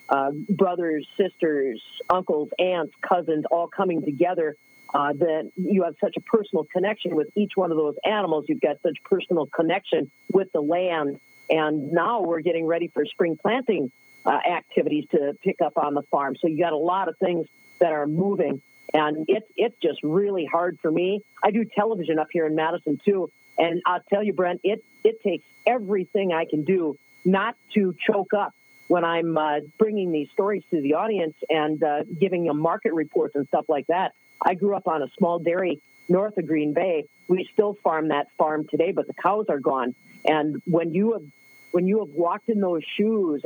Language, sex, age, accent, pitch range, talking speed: English, female, 50-69, American, 150-190 Hz, 195 wpm